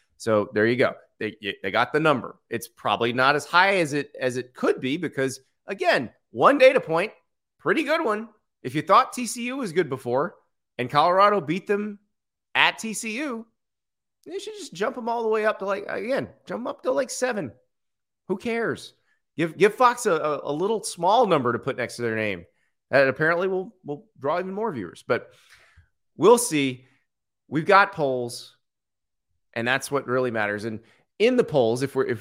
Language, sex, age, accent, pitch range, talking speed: English, male, 30-49, American, 130-220 Hz, 190 wpm